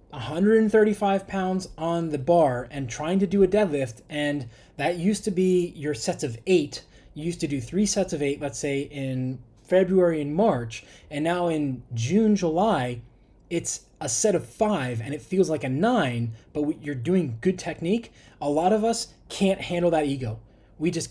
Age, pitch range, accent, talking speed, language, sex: 20-39, 135-200 Hz, American, 185 wpm, English, male